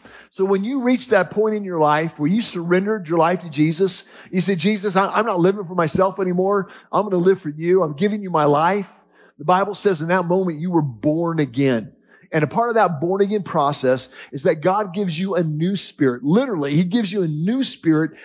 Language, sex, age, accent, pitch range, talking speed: English, male, 40-59, American, 165-205 Hz, 225 wpm